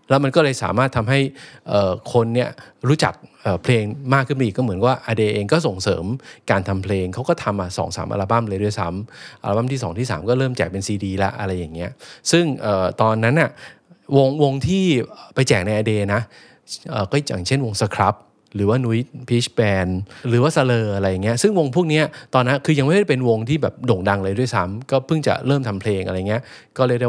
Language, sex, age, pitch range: English, male, 20-39, 100-130 Hz